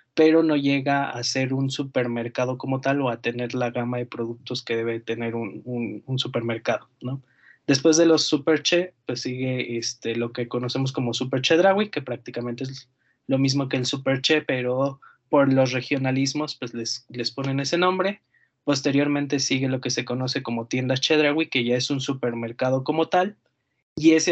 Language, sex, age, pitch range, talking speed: Spanish, male, 20-39, 125-145 Hz, 180 wpm